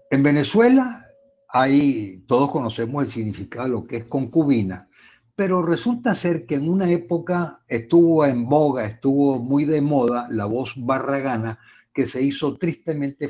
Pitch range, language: 110-150 Hz, Spanish